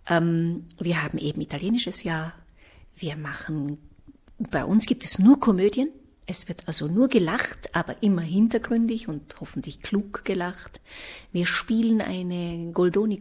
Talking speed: 135 wpm